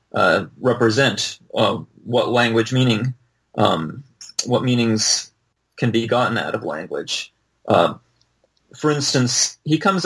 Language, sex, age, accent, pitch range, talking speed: English, male, 30-49, American, 115-135 Hz, 120 wpm